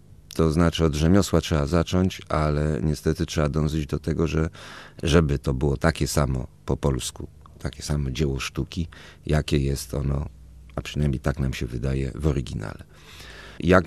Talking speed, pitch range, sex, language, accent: 160 wpm, 75-90 Hz, male, Polish, native